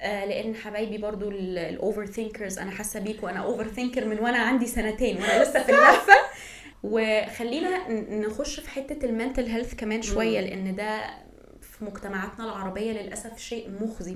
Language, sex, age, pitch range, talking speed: Arabic, female, 20-39, 205-255 Hz, 150 wpm